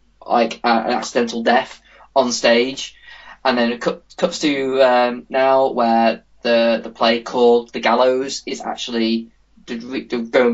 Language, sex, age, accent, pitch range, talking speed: English, male, 10-29, British, 115-150 Hz, 130 wpm